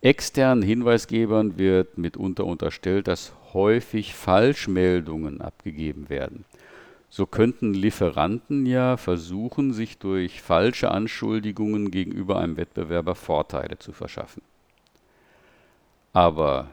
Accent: German